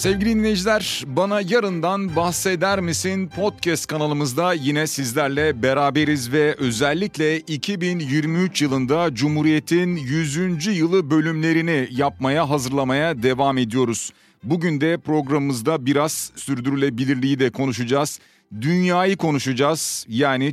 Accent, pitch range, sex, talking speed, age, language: native, 135-160 Hz, male, 95 wpm, 40-59, Turkish